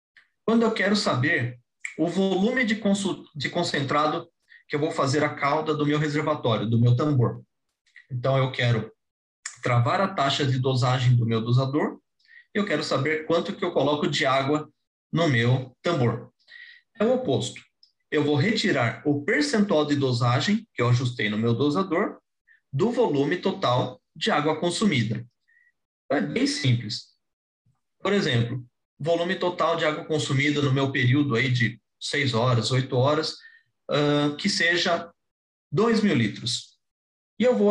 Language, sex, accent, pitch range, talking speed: Portuguese, male, Brazilian, 125-175 Hz, 150 wpm